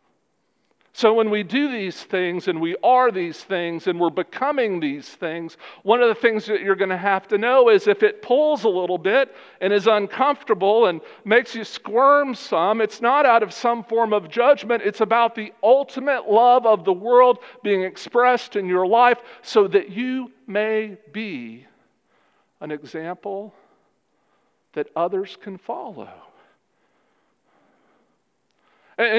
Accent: American